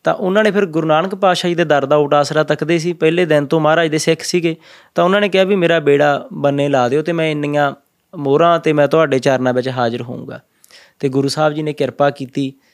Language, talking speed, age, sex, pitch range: Punjabi, 225 wpm, 20-39, male, 145-175 Hz